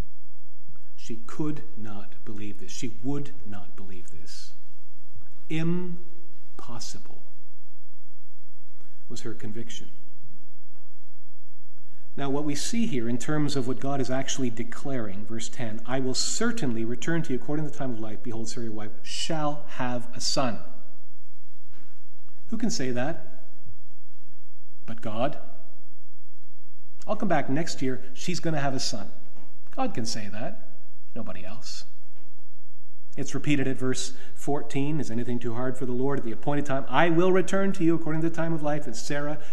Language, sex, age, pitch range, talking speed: English, male, 40-59, 120-160 Hz, 155 wpm